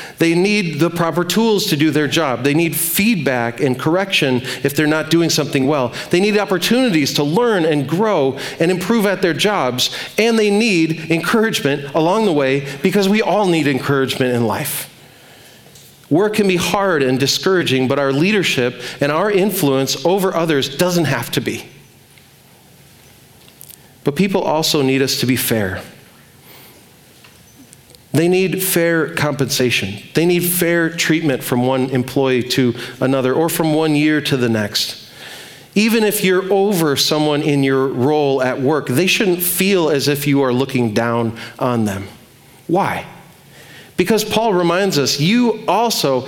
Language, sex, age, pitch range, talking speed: English, male, 40-59, 135-185 Hz, 155 wpm